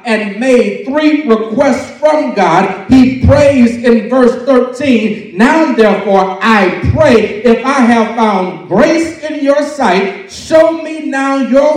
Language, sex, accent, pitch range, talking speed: English, male, American, 210-270 Hz, 140 wpm